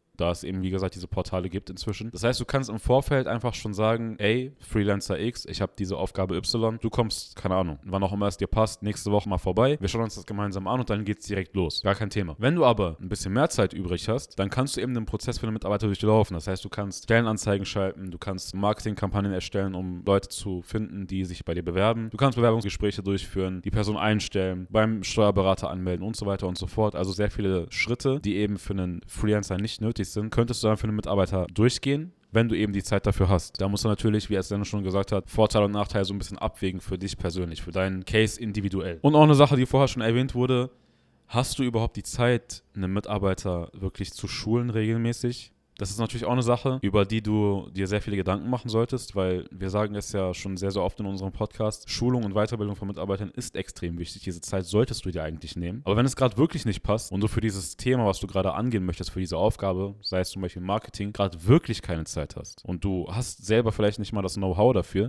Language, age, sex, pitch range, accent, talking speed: German, 10-29, male, 95-115 Hz, German, 240 wpm